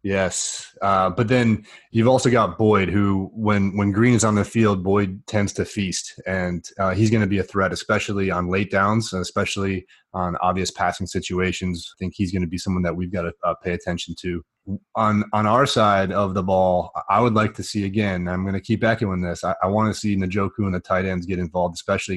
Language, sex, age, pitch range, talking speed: English, male, 30-49, 90-105 Hz, 225 wpm